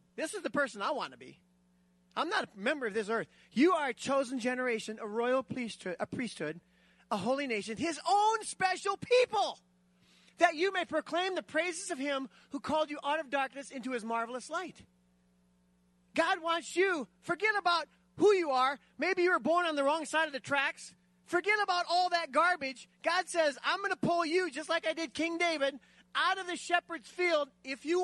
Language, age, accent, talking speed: English, 30-49, American, 200 wpm